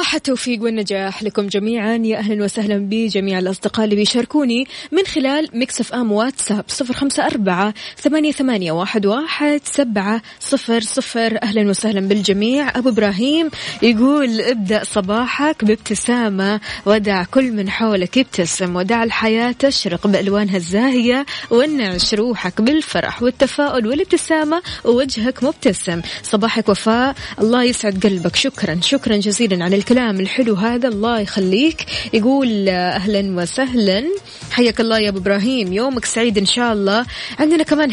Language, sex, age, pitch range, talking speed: Arabic, female, 20-39, 205-250 Hz, 120 wpm